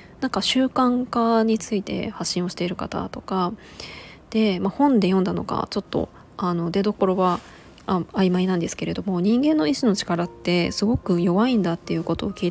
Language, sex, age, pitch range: Japanese, female, 20-39, 180-225 Hz